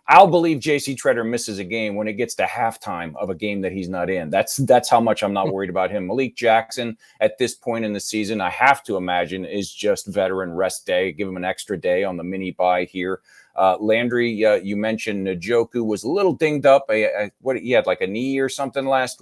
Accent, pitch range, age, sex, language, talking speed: American, 95-120 Hz, 30-49, male, English, 240 wpm